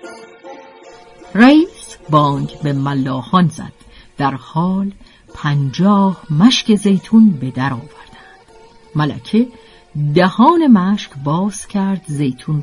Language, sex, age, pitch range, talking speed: Persian, female, 50-69, 150-235 Hz, 90 wpm